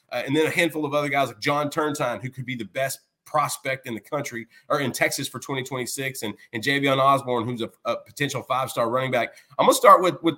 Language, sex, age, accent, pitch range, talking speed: English, male, 30-49, American, 130-165 Hz, 250 wpm